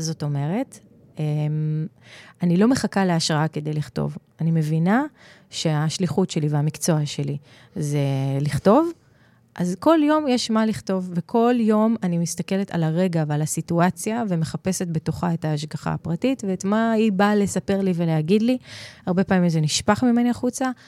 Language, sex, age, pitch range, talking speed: Hebrew, female, 30-49, 160-205 Hz, 140 wpm